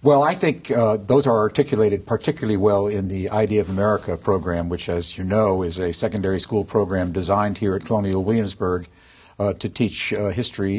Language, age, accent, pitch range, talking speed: English, 60-79, American, 100-120 Hz, 190 wpm